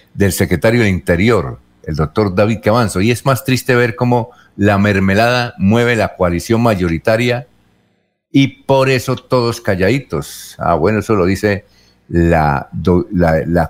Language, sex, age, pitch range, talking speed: Spanish, male, 50-69, 90-120 Hz, 150 wpm